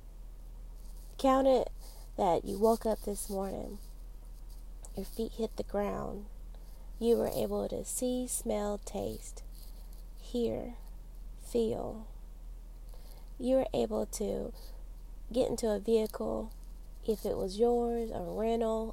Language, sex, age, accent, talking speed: English, female, 20-39, American, 115 wpm